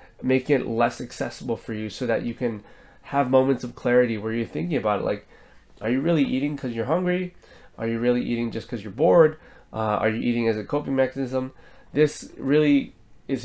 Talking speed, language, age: 205 wpm, English, 20-39